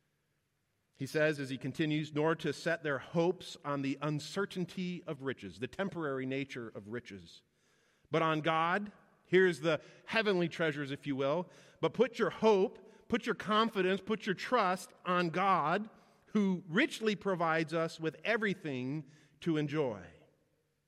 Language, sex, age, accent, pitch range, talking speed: English, male, 40-59, American, 125-185 Hz, 145 wpm